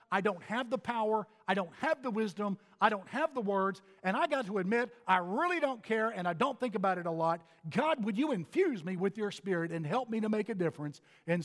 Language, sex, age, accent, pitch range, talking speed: English, male, 50-69, American, 180-240 Hz, 250 wpm